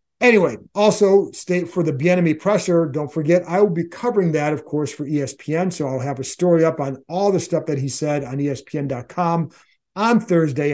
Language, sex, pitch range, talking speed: English, male, 145-175 Hz, 190 wpm